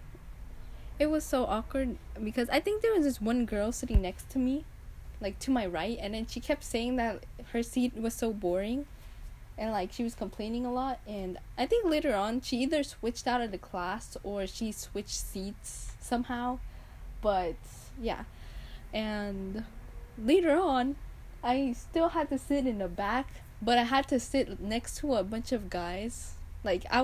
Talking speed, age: 180 wpm, 10-29